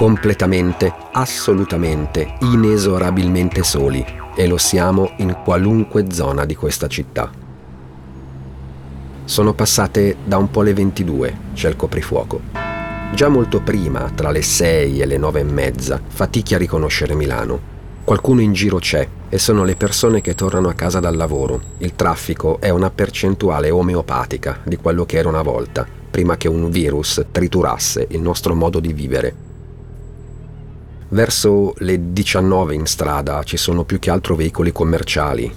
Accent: native